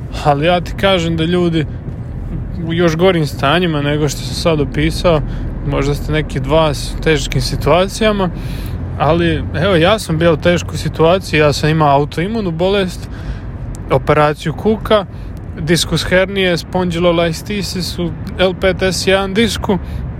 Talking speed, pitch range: 130 wpm, 135-175 Hz